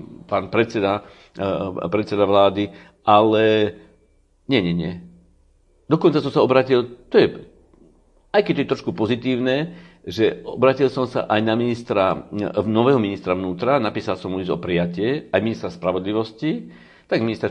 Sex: male